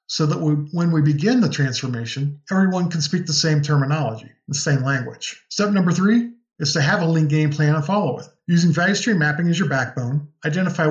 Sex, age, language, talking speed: male, 50-69, English, 205 wpm